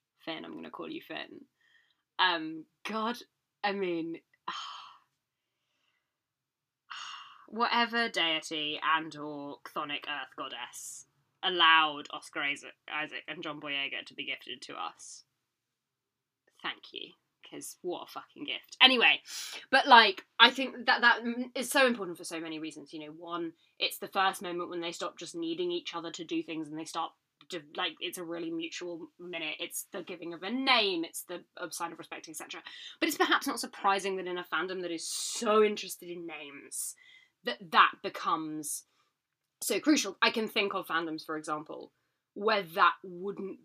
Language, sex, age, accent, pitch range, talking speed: English, female, 10-29, British, 160-235 Hz, 160 wpm